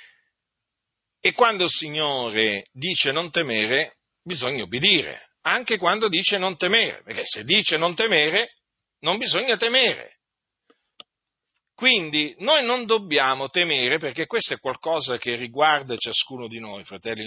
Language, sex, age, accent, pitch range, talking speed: Italian, male, 50-69, native, 155-245 Hz, 130 wpm